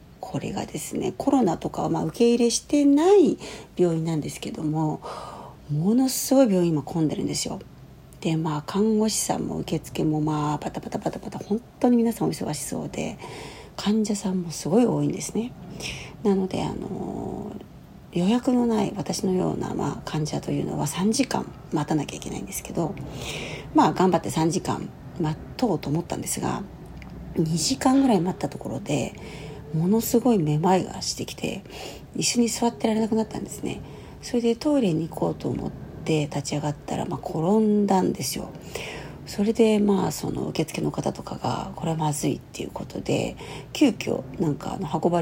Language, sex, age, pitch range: Japanese, female, 40-59, 160-230 Hz